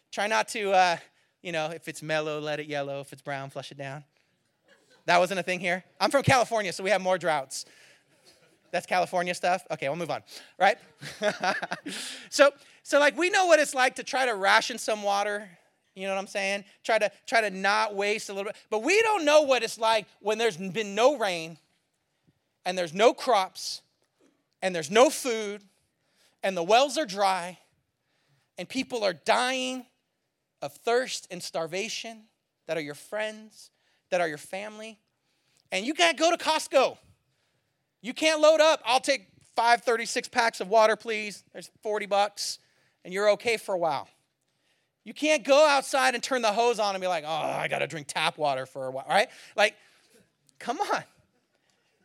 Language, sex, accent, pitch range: English, male, American, 165-245 Hz